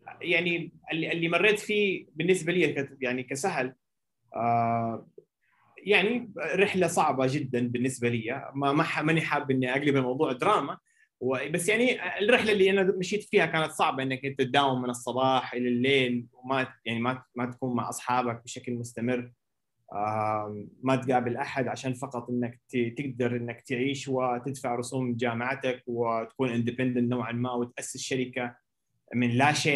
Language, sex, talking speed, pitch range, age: Arabic, male, 135 wpm, 125-160 Hz, 20-39